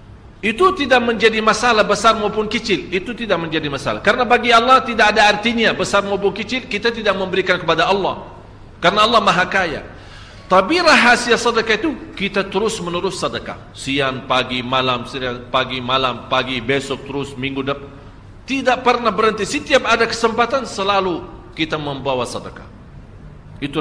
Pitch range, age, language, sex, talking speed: 135-225 Hz, 40-59, Indonesian, male, 150 wpm